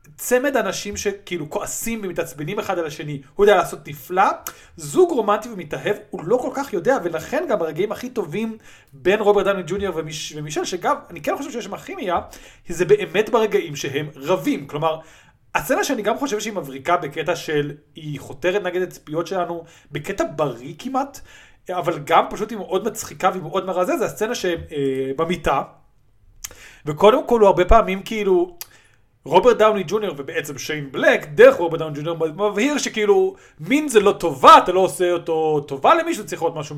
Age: 30-49